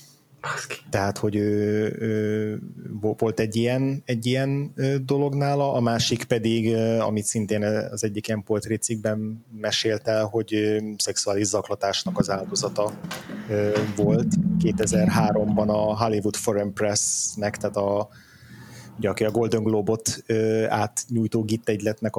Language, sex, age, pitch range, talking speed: Hungarian, male, 20-39, 100-110 Hz, 120 wpm